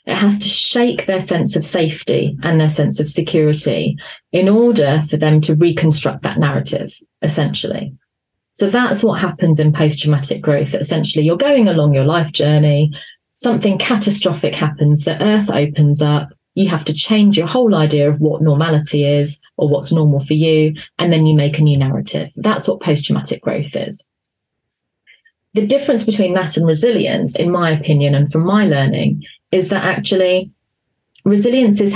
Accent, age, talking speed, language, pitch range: British, 30-49, 165 wpm, English, 150-190 Hz